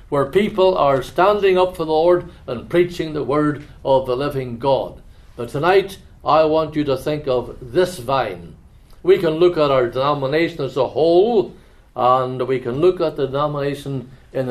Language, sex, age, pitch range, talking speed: English, male, 60-79, 135-180 Hz, 180 wpm